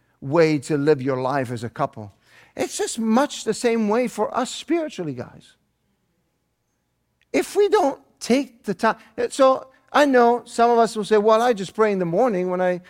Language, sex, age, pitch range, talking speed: English, male, 50-69, 140-215 Hz, 190 wpm